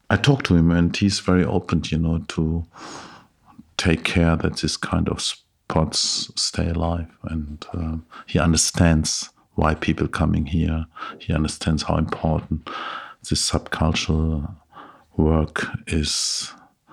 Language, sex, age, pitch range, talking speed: English, male, 50-69, 80-85 Hz, 130 wpm